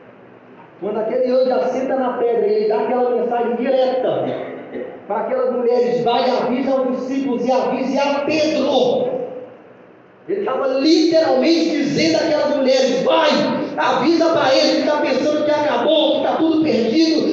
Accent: Brazilian